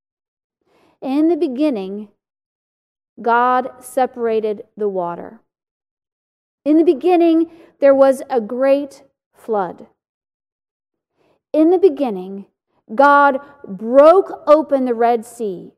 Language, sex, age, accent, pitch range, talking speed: English, female, 40-59, American, 215-285 Hz, 90 wpm